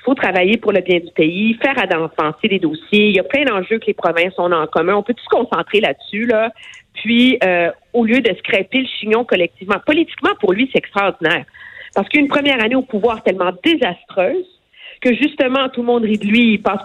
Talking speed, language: 220 wpm, French